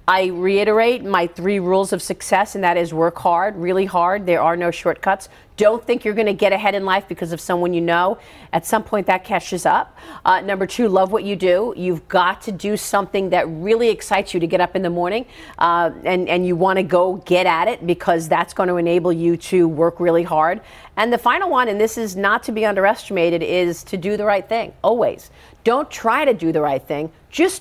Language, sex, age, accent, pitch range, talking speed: English, female, 40-59, American, 175-225 Hz, 225 wpm